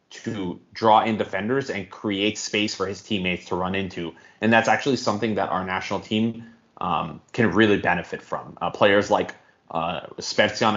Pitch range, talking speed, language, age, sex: 95-110 Hz, 175 wpm, English, 20-39, male